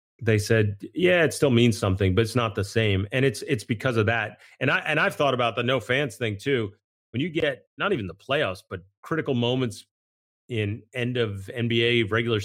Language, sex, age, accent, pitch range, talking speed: English, male, 30-49, American, 105-135 Hz, 210 wpm